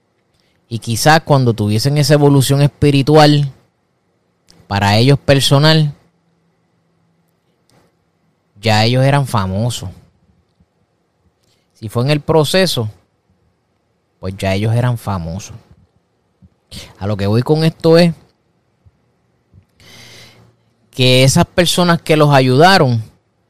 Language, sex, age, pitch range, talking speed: Spanish, male, 20-39, 110-150 Hz, 95 wpm